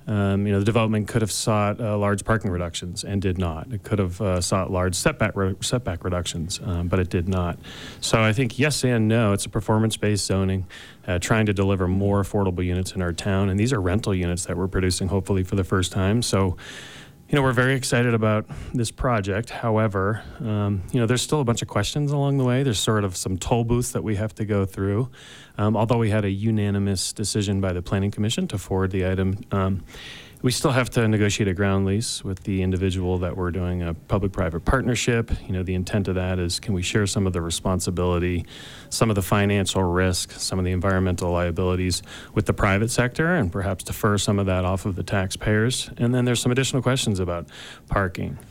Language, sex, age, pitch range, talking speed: English, male, 30-49, 95-115 Hz, 215 wpm